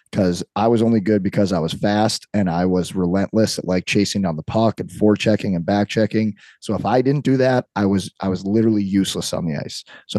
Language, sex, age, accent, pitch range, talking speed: English, male, 30-49, American, 100-115 Hz, 240 wpm